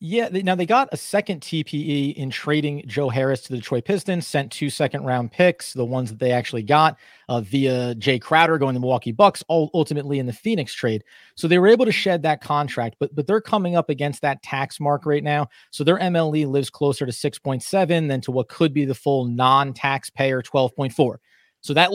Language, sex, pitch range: English, male, 135-170 Hz